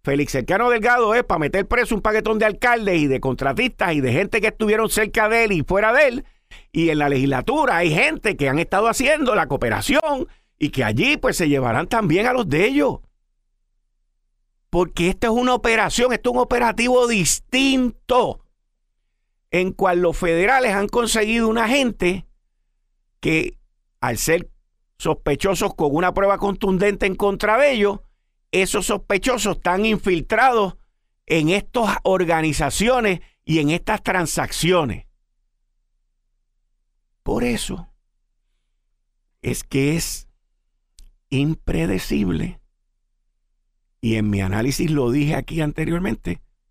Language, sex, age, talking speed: Spanish, male, 50-69, 135 wpm